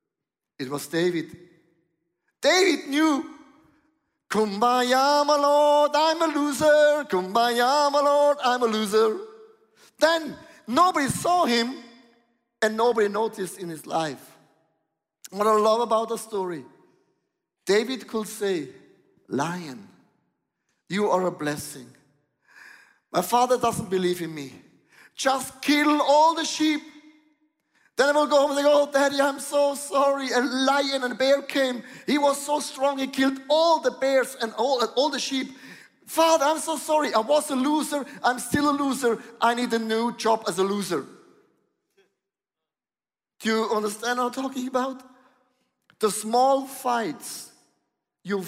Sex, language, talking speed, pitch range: male, English, 145 wpm, 210-290 Hz